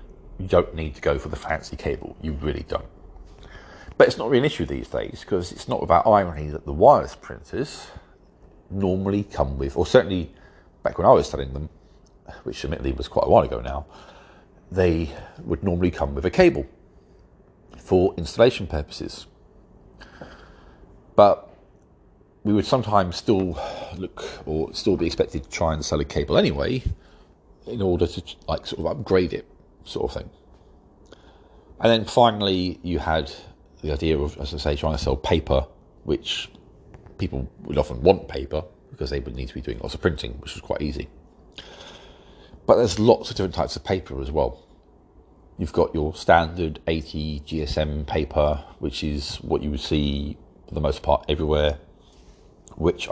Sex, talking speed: male, 170 wpm